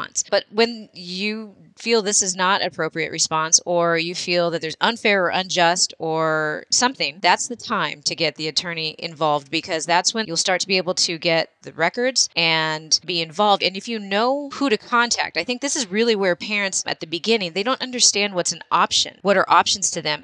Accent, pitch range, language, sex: American, 170-220 Hz, English, female